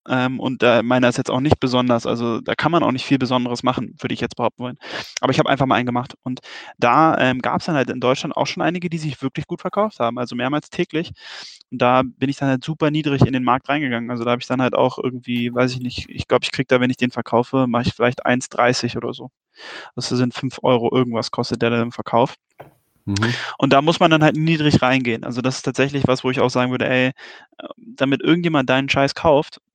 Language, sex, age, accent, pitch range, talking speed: German, male, 10-29, German, 125-140 Hz, 245 wpm